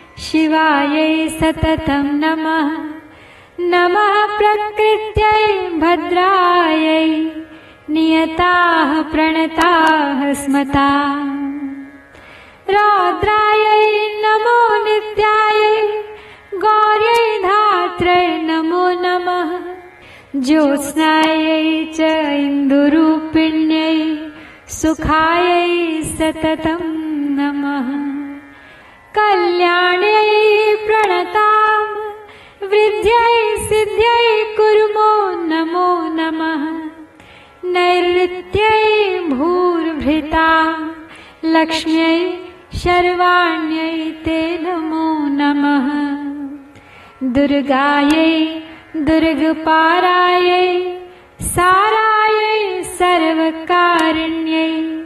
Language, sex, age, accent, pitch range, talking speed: Hindi, female, 30-49, native, 315-400 Hz, 40 wpm